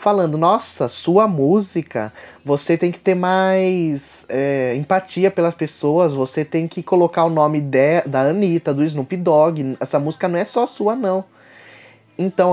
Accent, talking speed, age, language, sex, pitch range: Brazilian, 160 wpm, 20-39, Portuguese, male, 145-190 Hz